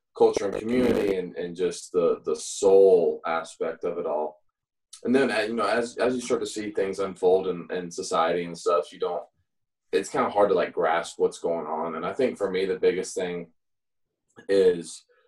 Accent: American